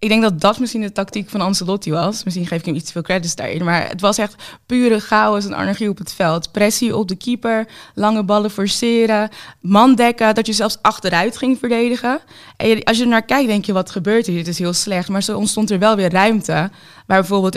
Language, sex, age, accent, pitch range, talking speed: Dutch, female, 20-39, Dutch, 175-215 Hz, 230 wpm